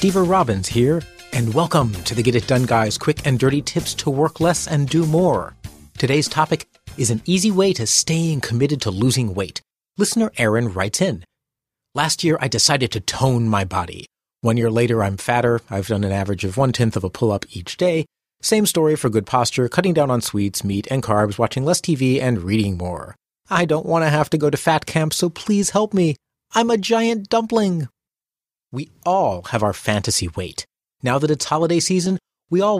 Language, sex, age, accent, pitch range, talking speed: English, male, 30-49, American, 110-160 Hz, 200 wpm